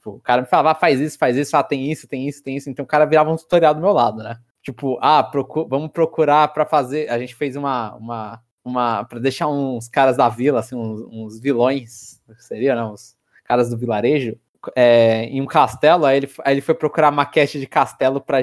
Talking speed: 230 wpm